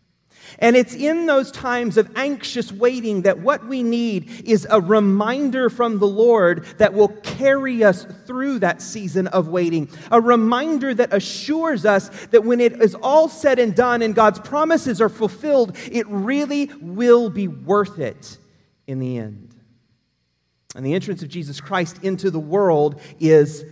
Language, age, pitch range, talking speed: English, 30-49, 140-205 Hz, 160 wpm